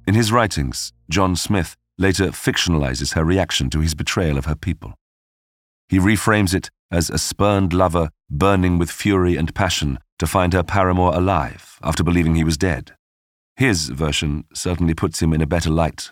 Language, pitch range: English, 80-100 Hz